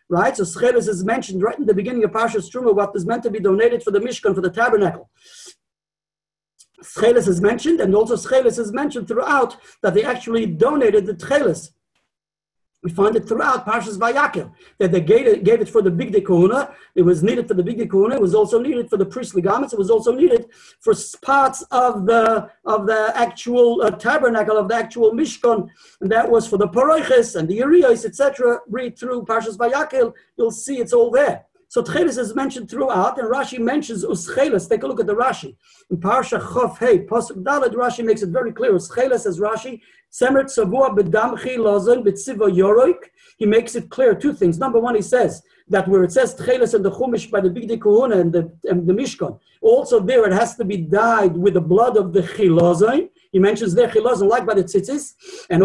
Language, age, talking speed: English, 40-59, 195 wpm